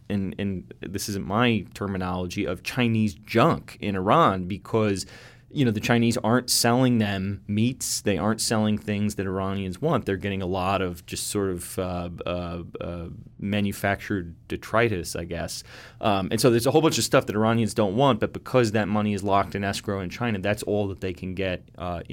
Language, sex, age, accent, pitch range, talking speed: English, male, 20-39, American, 100-125 Hz, 195 wpm